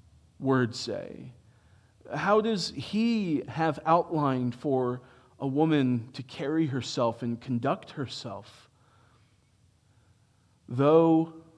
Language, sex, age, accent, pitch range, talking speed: English, male, 40-59, American, 115-145 Hz, 90 wpm